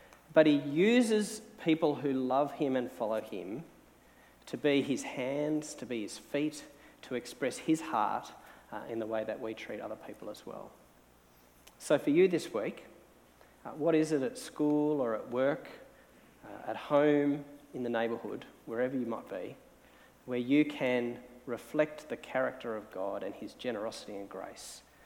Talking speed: 170 wpm